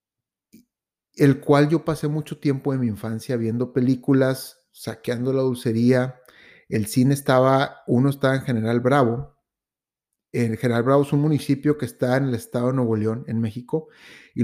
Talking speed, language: 160 wpm, Spanish